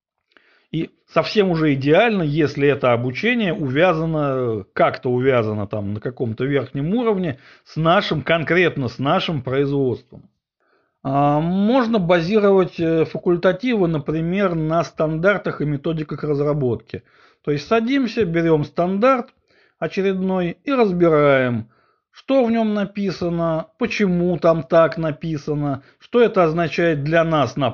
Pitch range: 140-185 Hz